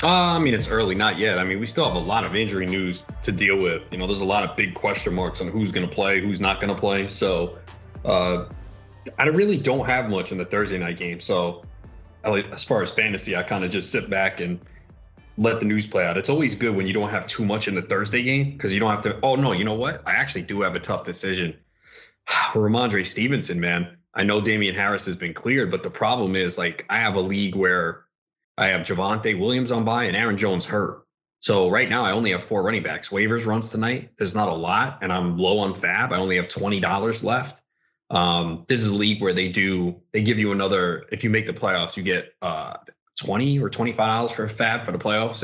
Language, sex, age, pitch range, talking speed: English, male, 30-49, 90-110 Hz, 240 wpm